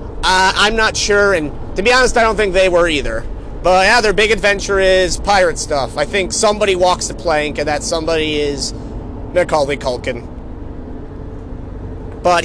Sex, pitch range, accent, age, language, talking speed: male, 130-175 Hz, American, 30-49, English, 170 wpm